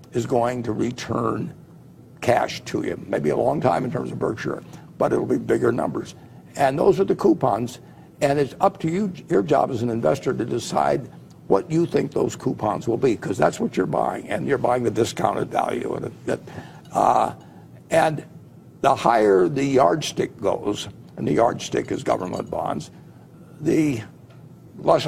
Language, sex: Chinese, male